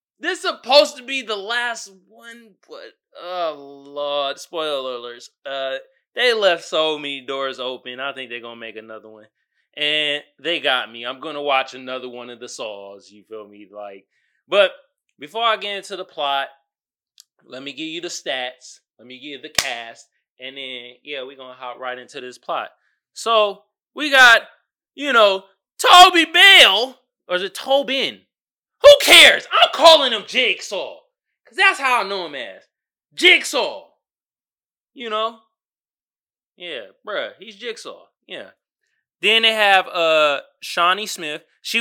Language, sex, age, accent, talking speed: English, male, 20-39, American, 165 wpm